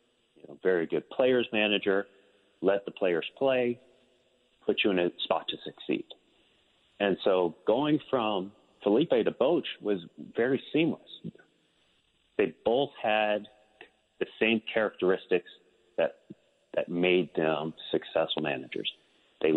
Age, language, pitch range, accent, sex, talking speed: 40-59, English, 80-110 Hz, American, male, 115 wpm